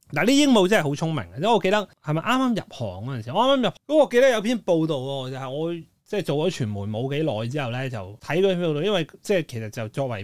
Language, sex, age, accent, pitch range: Chinese, male, 20-39, native, 130-180 Hz